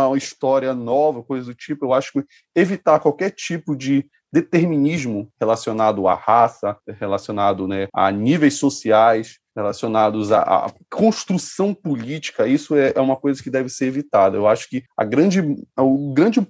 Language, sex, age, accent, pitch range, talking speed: Portuguese, male, 20-39, Brazilian, 125-165 Hz, 155 wpm